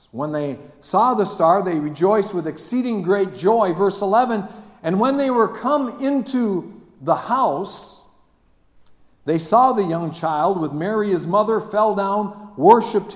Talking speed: 150 wpm